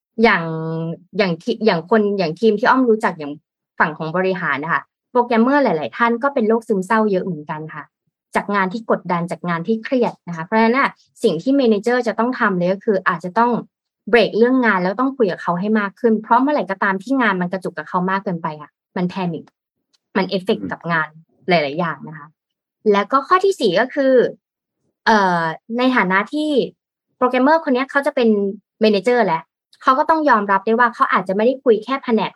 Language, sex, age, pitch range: Thai, female, 20-39, 185-240 Hz